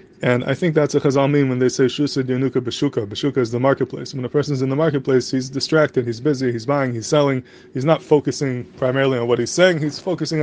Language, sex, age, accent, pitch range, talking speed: English, male, 20-39, American, 130-150 Hz, 230 wpm